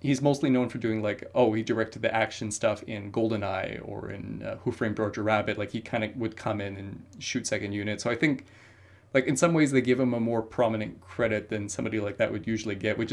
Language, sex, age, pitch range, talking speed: English, male, 30-49, 105-125 Hz, 245 wpm